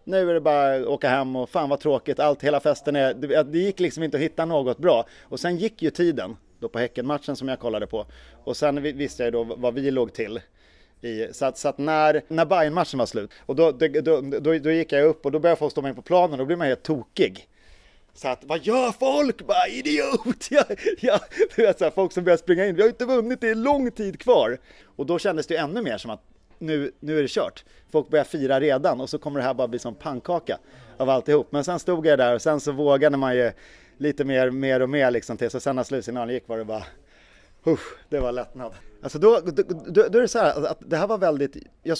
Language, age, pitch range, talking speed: Swedish, 30-49, 130-170 Hz, 255 wpm